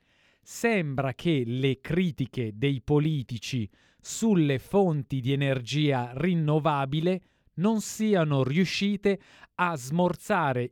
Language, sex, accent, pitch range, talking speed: Italian, male, native, 125-180 Hz, 90 wpm